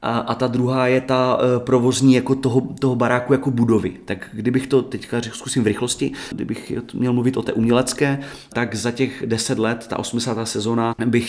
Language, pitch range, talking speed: Czech, 105-120 Hz, 185 wpm